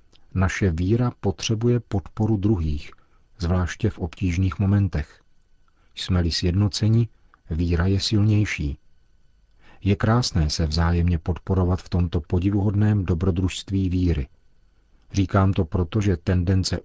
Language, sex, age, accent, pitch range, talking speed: Czech, male, 50-69, native, 80-100 Hz, 105 wpm